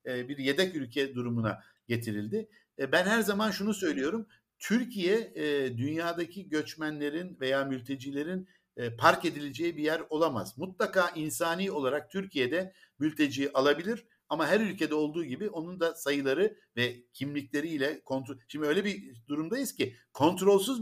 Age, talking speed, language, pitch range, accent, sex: 60-79, 125 wpm, Turkish, 135-190 Hz, native, male